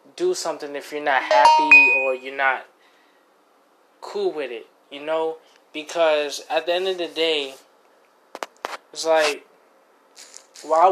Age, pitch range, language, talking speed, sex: 20-39, 140-165 Hz, English, 130 wpm, male